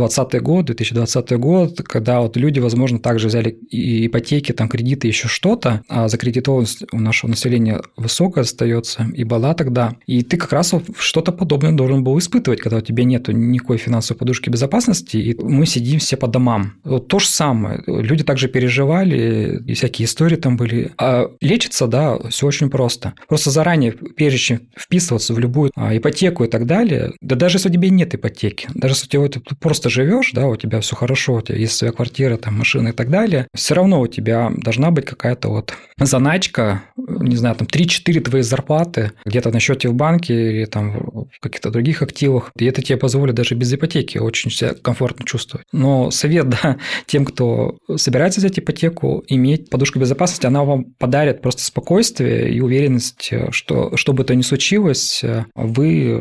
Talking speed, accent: 180 wpm, native